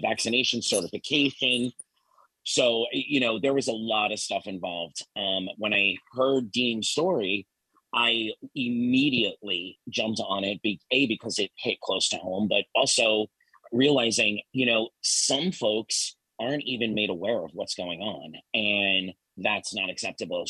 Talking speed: 145 wpm